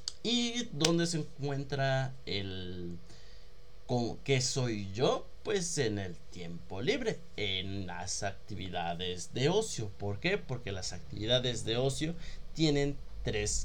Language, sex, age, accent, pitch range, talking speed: Spanish, male, 30-49, Mexican, 100-140 Hz, 125 wpm